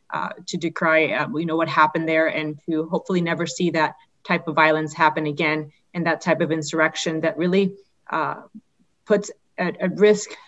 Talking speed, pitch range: 185 wpm, 160-180 Hz